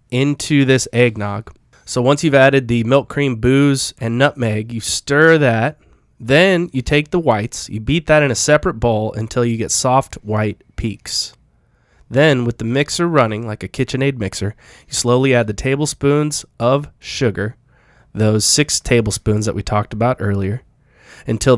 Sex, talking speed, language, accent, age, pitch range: male, 165 wpm, English, American, 20-39, 110-140 Hz